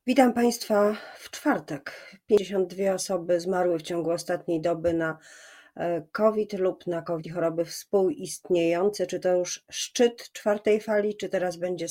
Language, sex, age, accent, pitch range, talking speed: Polish, female, 30-49, native, 170-205 Hz, 135 wpm